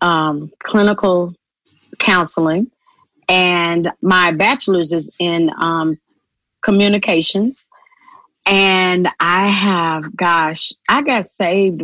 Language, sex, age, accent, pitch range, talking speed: English, female, 30-49, American, 170-200 Hz, 85 wpm